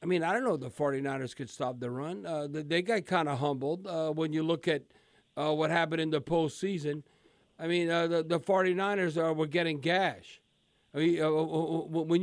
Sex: male